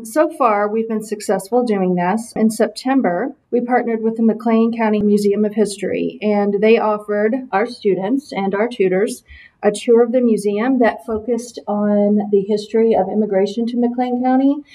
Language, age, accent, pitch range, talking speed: English, 40-59, American, 200-230 Hz, 165 wpm